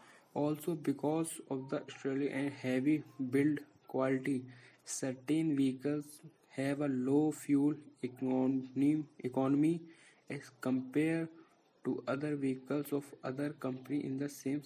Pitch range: 130-145 Hz